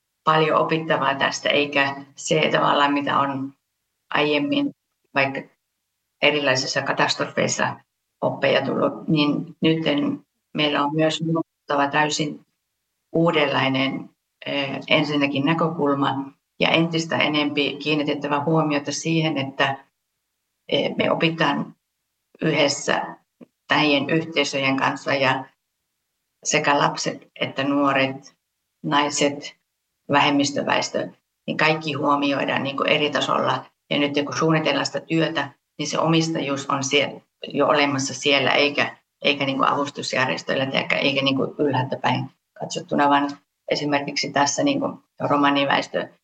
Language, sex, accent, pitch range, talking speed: Finnish, female, native, 140-155 Hz, 105 wpm